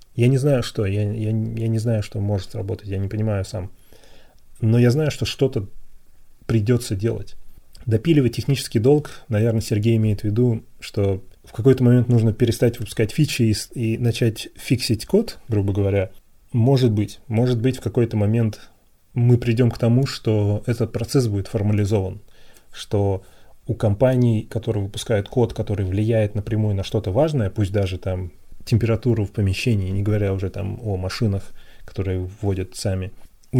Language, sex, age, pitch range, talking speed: Russian, male, 30-49, 100-120 Hz, 160 wpm